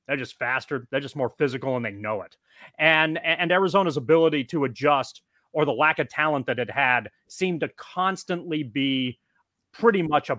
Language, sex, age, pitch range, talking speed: English, male, 30-49, 140-175 Hz, 185 wpm